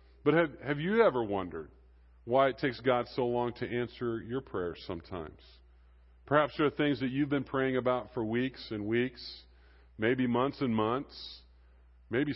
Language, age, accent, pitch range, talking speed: English, 40-59, American, 110-140 Hz, 170 wpm